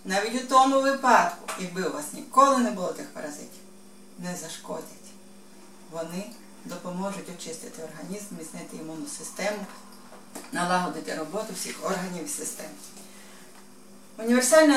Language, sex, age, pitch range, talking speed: Ukrainian, female, 30-49, 185-235 Hz, 115 wpm